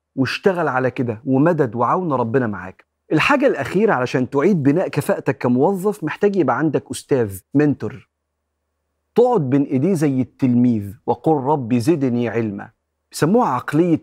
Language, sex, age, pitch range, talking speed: Arabic, male, 40-59, 115-160 Hz, 130 wpm